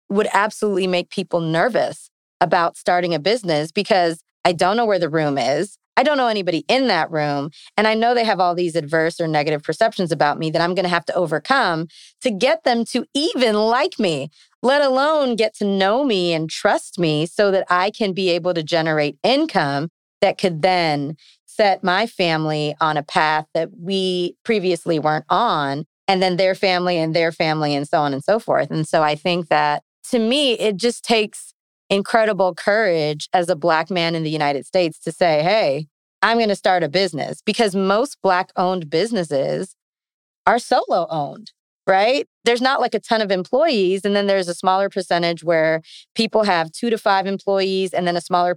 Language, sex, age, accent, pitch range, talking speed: English, female, 30-49, American, 165-215 Hz, 195 wpm